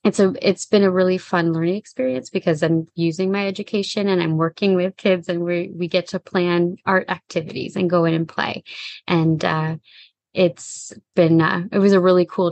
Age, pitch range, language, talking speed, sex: 20-39, 165-190 Hz, English, 200 wpm, female